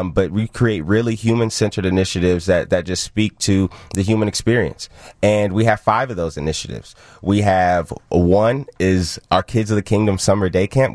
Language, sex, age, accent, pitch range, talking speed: English, male, 20-39, American, 90-105 Hz, 180 wpm